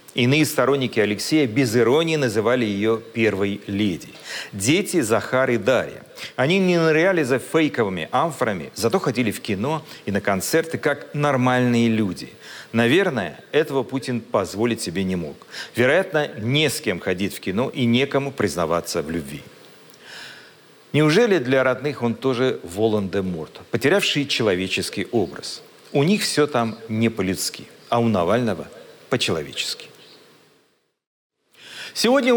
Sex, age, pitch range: male, 40-59, 120-185 Hz